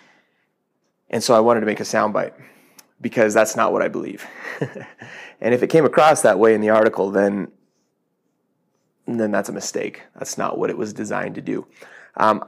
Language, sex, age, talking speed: English, male, 30-49, 185 wpm